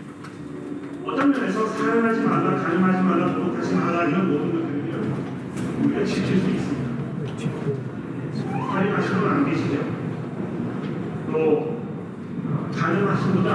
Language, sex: Korean, male